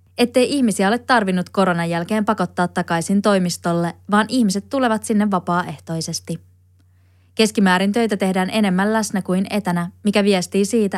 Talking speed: 130 wpm